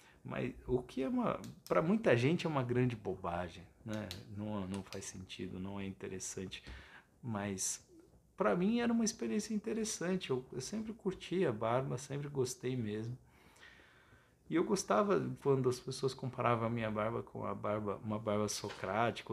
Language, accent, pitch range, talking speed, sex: Portuguese, Brazilian, 100-140 Hz, 160 wpm, male